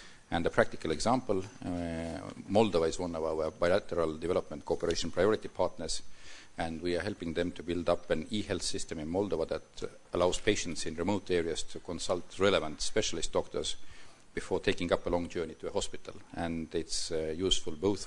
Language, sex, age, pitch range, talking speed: English, male, 50-69, 80-90 Hz, 175 wpm